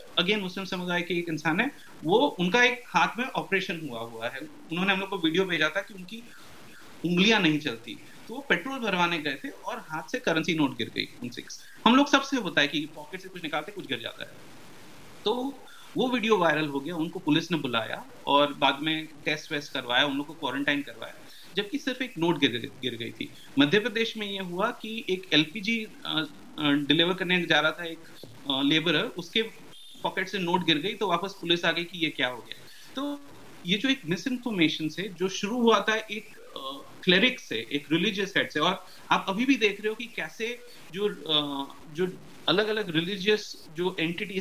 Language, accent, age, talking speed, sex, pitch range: Hindi, native, 30-49, 95 wpm, male, 155-210 Hz